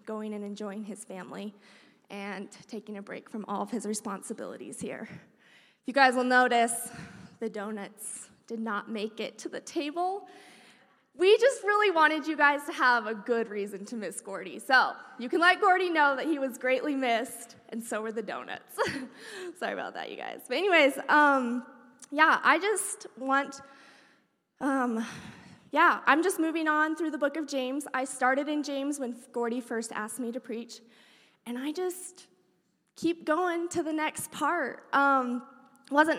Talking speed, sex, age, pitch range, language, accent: 170 wpm, female, 20-39, 230-290 Hz, English, American